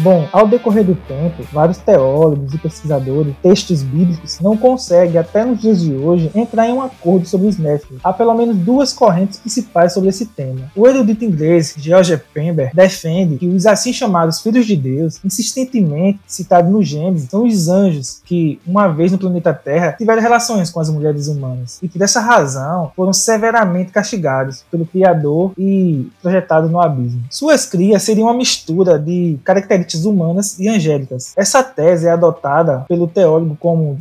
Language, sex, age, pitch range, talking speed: Portuguese, male, 20-39, 160-205 Hz, 170 wpm